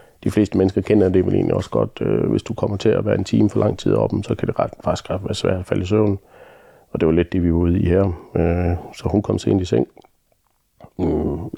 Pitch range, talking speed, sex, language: 85-105 Hz, 255 wpm, male, Danish